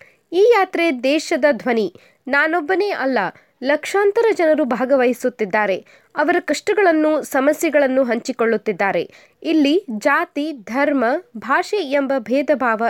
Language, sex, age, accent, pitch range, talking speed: Kannada, female, 20-39, native, 240-335 Hz, 90 wpm